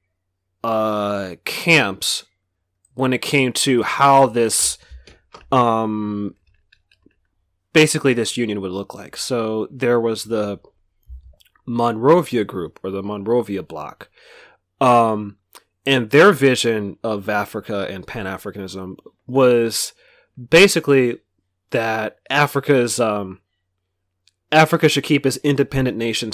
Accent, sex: American, male